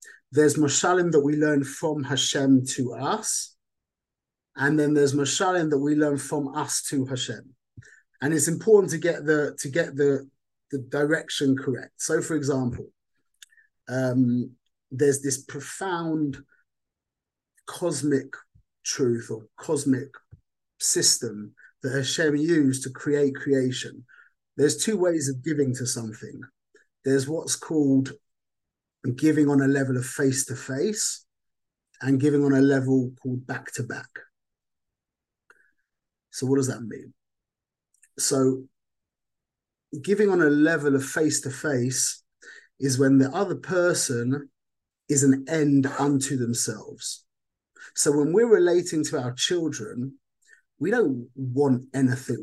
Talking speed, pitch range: 120 wpm, 130-150 Hz